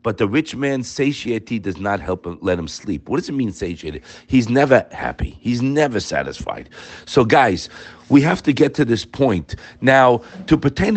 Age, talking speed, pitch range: 40-59, 190 wpm, 110-150 Hz